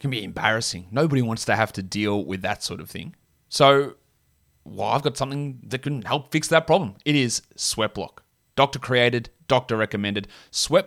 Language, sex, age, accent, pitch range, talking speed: English, male, 30-49, Australian, 105-140 Hz, 190 wpm